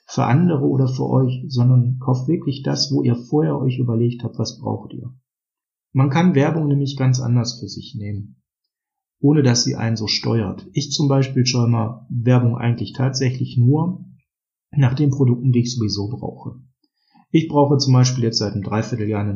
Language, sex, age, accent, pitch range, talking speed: German, male, 40-59, German, 115-140 Hz, 180 wpm